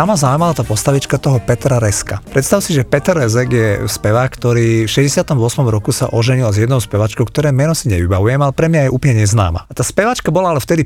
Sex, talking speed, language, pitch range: male, 220 wpm, Slovak, 110-145 Hz